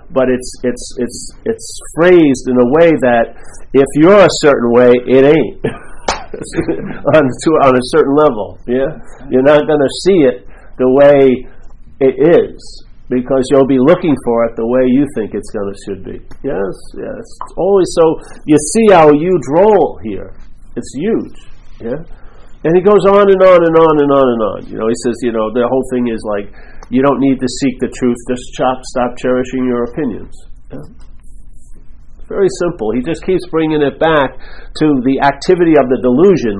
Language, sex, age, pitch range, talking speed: English, male, 50-69, 125-160 Hz, 185 wpm